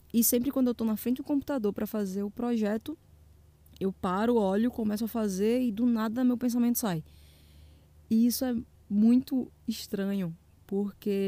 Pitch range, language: 195-255 Hz, Portuguese